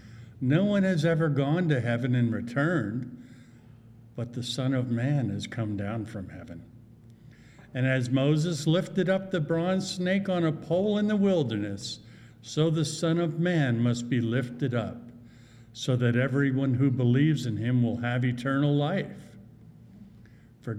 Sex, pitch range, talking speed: male, 115-135 Hz, 155 wpm